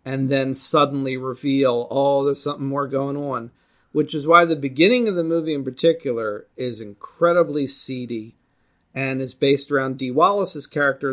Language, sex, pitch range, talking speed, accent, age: English, male, 125-145 Hz, 160 wpm, American, 40-59